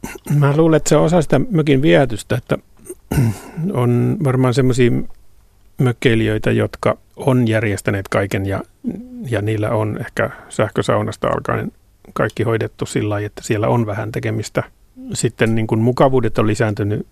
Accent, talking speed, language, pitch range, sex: native, 135 wpm, Finnish, 105-130 Hz, male